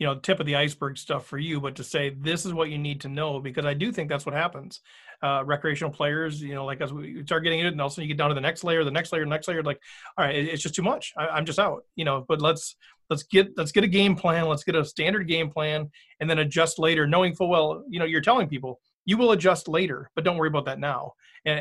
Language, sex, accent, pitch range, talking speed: English, male, American, 145-180 Hz, 290 wpm